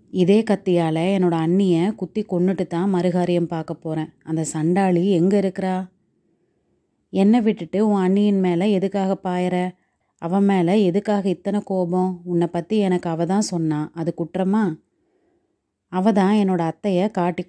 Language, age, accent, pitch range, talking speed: Tamil, 30-49, native, 170-195 Hz, 125 wpm